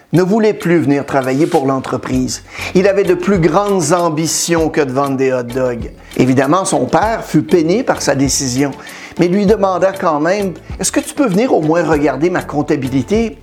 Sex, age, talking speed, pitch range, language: male, 60-79, 190 wpm, 145-190 Hz, French